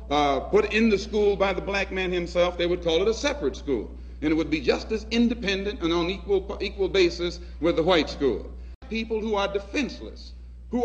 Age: 60-79